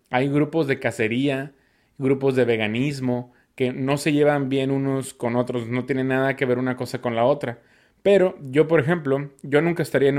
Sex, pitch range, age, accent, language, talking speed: male, 125-145 Hz, 20-39, Mexican, Spanish, 195 wpm